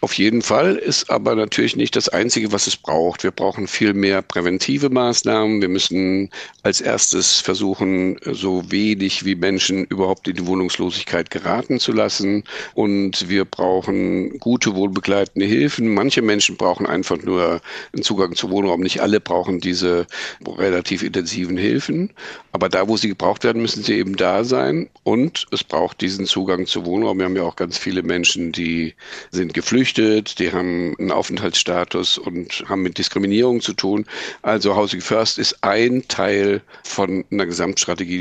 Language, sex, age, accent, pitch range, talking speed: German, male, 50-69, German, 90-110 Hz, 160 wpm